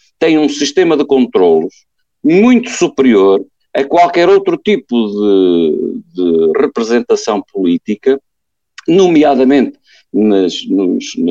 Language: Portuguese